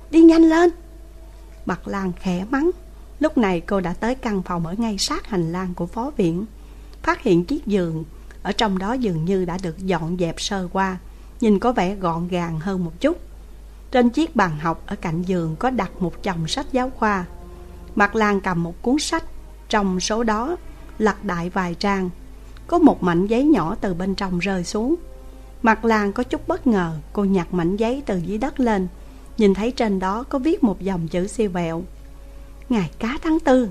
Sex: female